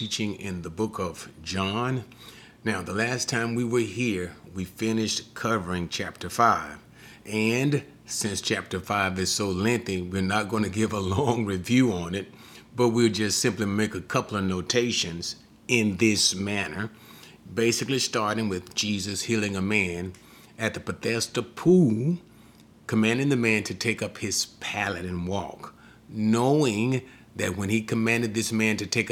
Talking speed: 160 wpm